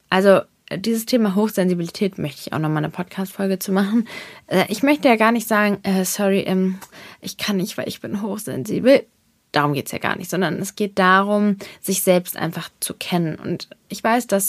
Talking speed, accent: 190 wpm, German